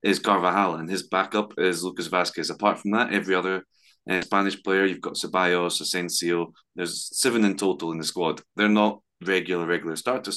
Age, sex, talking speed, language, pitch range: 20-39, male, 180 wpm, English, 90-105 Hz